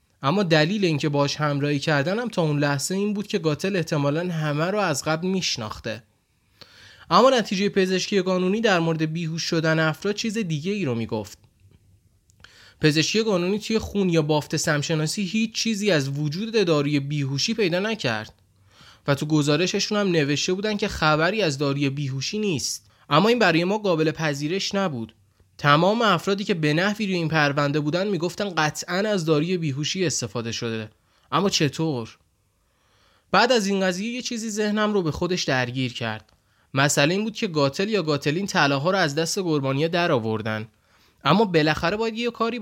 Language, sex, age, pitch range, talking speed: Persian, male, 20-39, 135-195 Hz, 165 wpm